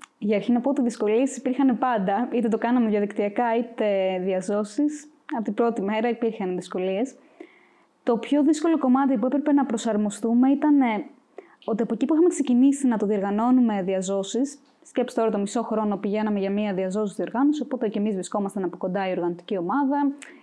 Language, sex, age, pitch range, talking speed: Greek, female, 20-39, 205-285 Hz, 170 wpm